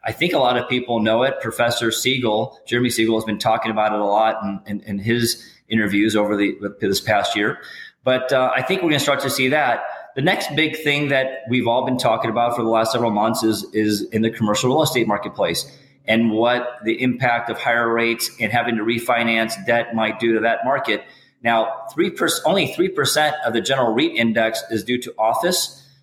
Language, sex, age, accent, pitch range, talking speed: English, male, 30-49, American, 115-135 Hz, 215 wpm